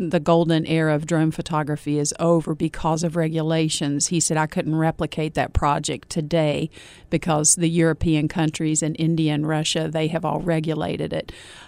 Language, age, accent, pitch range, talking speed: English, 50-69, American, 155-170 Hz, 165 wpm